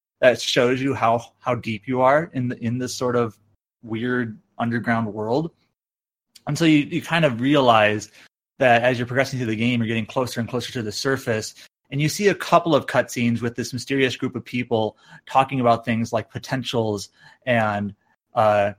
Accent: American